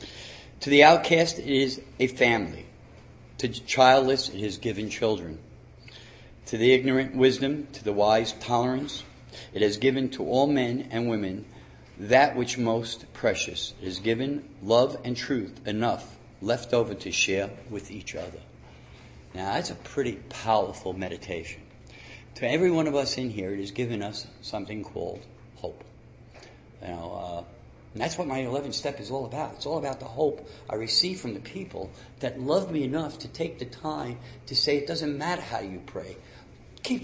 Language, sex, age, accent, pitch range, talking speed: English, male, 50-69, American, 115-155 Hz, 175 wpm